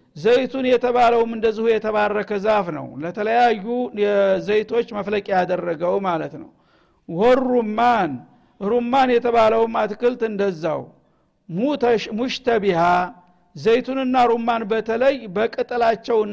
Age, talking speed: 60-79, 65 wpm